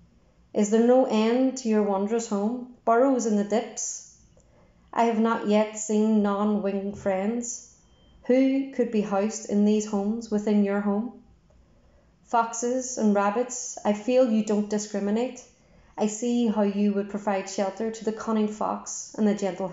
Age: 30-49